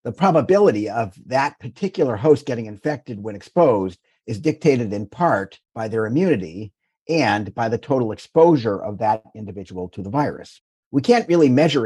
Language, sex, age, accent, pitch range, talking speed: English, male, 50-69, American, 105-140 Hz, 160 wpm